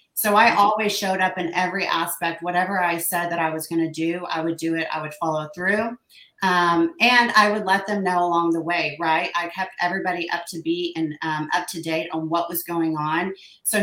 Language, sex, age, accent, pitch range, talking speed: English, female, 30-49, American, 165-190 Hz, 230 wpm